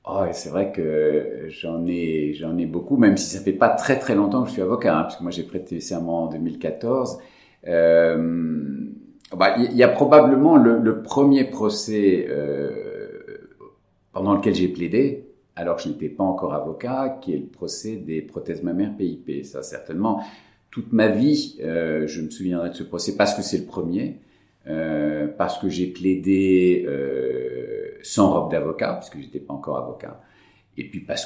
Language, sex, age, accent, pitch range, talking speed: French, male, 50-69, French, 80-125 Hz, 185 wpm